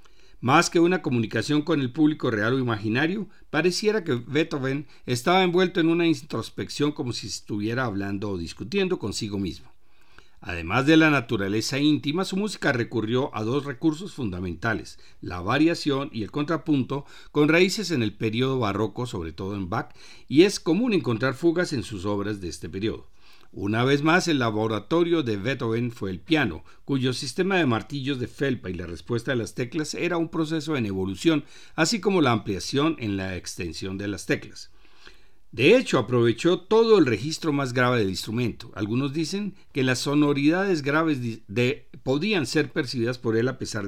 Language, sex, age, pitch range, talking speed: Spanish, male, 50-69, 110-160 Hz, 170 wpm